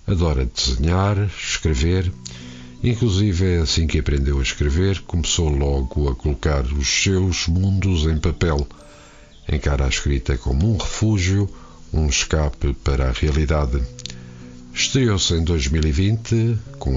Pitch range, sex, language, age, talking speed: 75-95 Hz, male, Portuguese, 50-69, 120 wpm